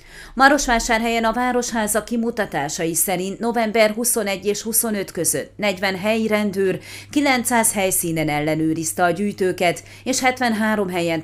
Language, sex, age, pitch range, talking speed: Hungarian, female, 30-49, 170-220 Hz, 110 wpm